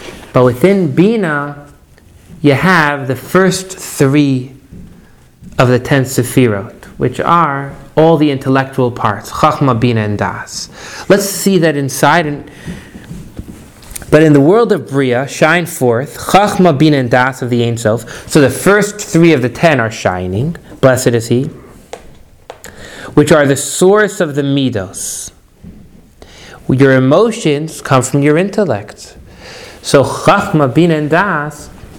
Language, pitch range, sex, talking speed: English, 125-165 Hz, male, 135 wpm